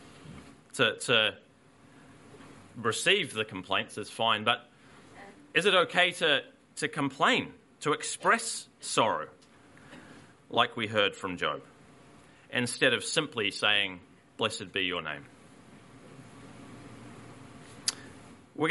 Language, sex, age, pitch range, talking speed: English, male, 30-49, 120-140 Hz, 95 wpm